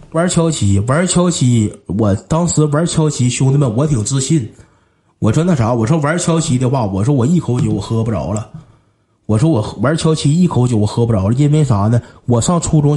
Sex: male